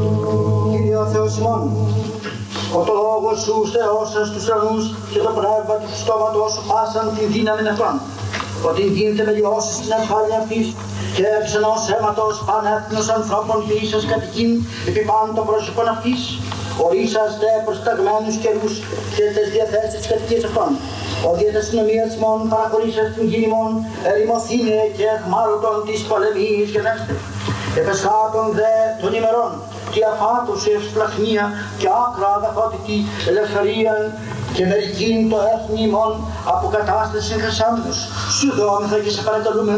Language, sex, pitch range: Greek, male, 205-220 Hz